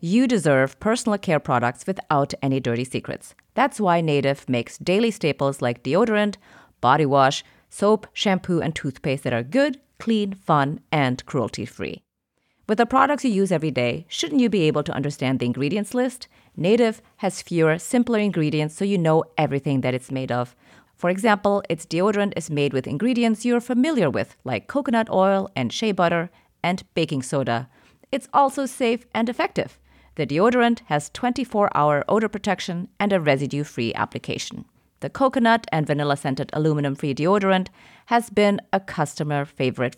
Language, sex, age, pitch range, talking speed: English, female, 30-49, 145-215 Hz, 160 wpm